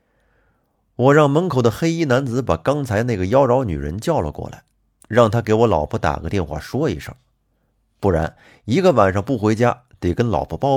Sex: male